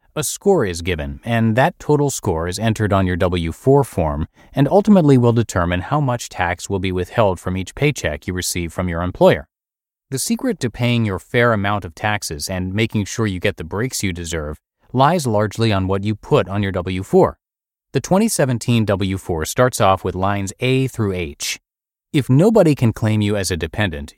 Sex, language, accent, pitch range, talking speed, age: male, English, American, 90-125 Hz, 190 wpm, 30-49